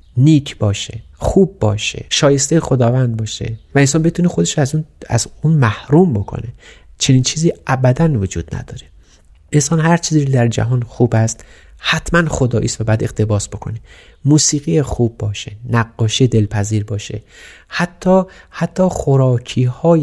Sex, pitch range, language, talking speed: male, 110-140 Hz, Persian, 130 wpm